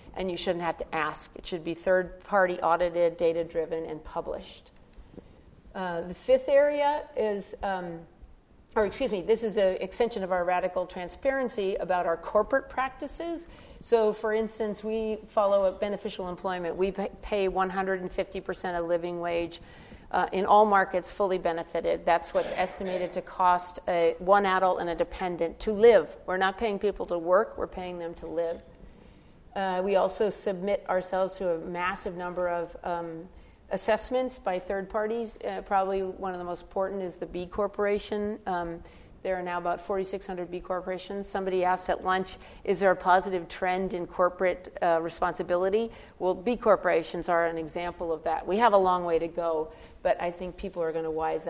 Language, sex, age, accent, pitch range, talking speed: English, female, 40-59, American, 175-200 Hz, 170 wpm